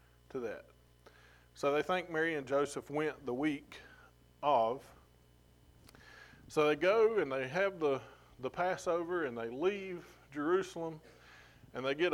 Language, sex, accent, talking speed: English, male, American, 140 wpm